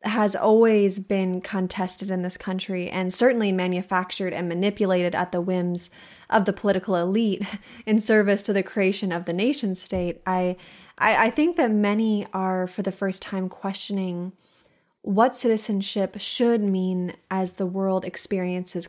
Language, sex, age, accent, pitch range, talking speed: English, female, 20-39, American, 185-215 Hz, 155 wpm